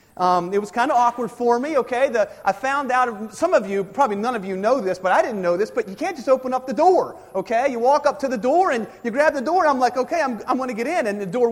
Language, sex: English, male